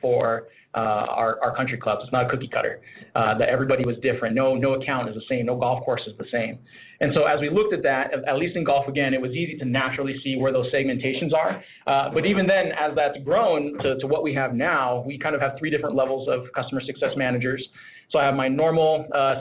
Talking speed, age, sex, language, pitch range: 245 wpm, 30-49, male, English, 125-145 Hz